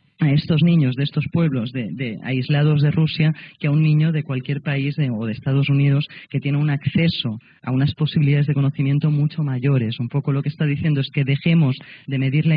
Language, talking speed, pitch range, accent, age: Spanish, 205 wpm, 135-160 Hz, Spanish, 30-49